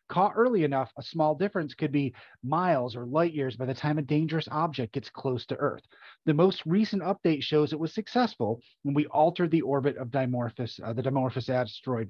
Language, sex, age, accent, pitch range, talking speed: English, male, 30-49, American, 135-180 Hz, 200 wpm